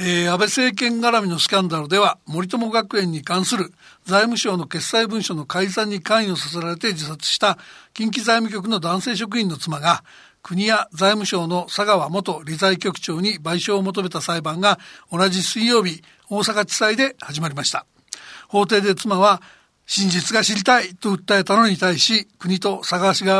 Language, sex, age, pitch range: Japanese, male, 60-79, 180-220 Hz